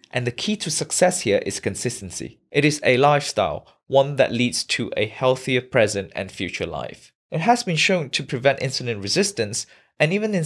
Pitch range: 125-170 Hz